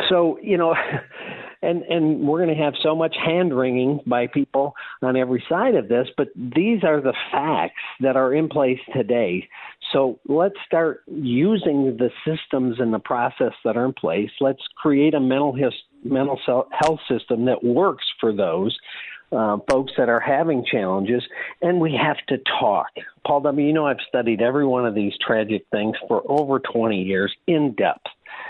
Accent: American